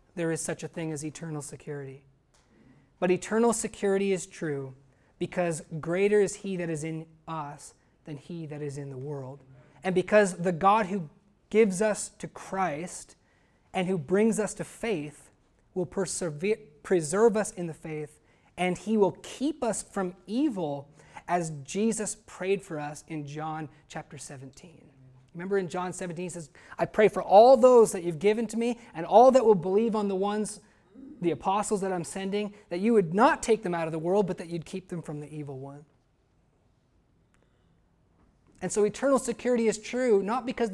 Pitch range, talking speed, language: 150-210 Hz, 180 wpm, English